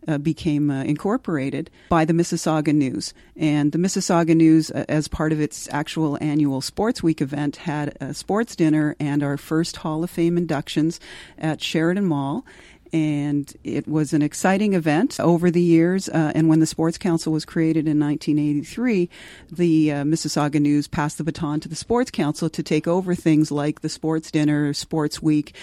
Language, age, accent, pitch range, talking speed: English, 40-59, American, 150-170 Hz, 180 wpm